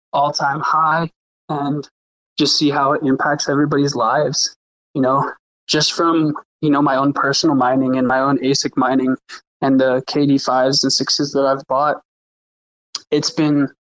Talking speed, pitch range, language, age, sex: 150 wpm, 140-155 Hz, English, 20-39, male